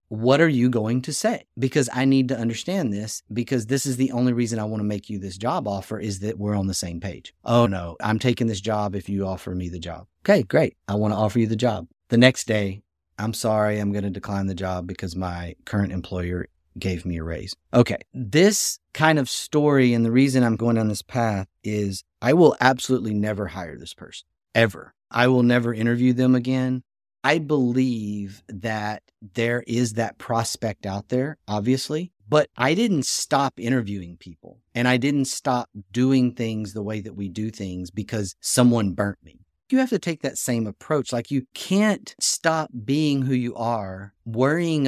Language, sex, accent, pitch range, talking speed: English, male, American, 100-130 Hz, 200 wpm